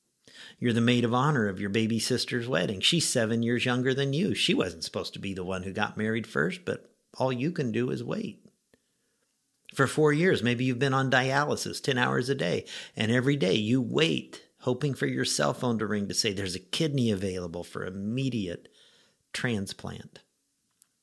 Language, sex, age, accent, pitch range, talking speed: English, male, 50-69, American, 110-150 Hz, 190 wpm